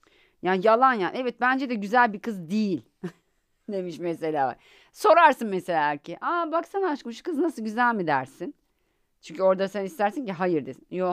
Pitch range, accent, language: 155-240 Hz, native, Turkish